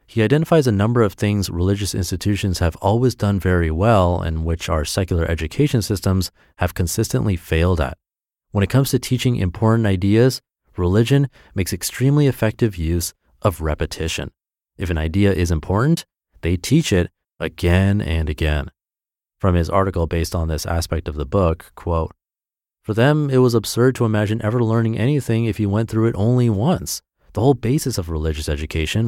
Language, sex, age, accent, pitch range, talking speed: English, male, 30-49, American, 85-115 Hz, 170 wpm